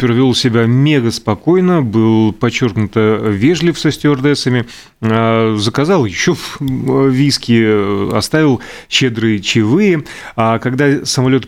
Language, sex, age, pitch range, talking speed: Russian, male, 30-49, 115-140 Hz, 100 wpm